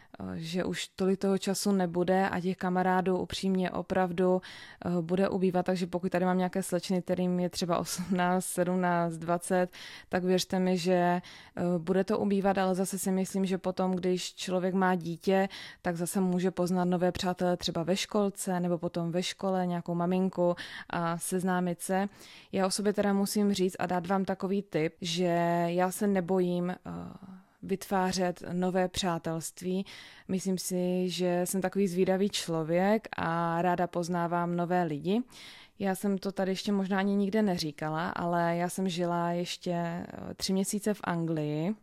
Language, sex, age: Czech, female, 20-39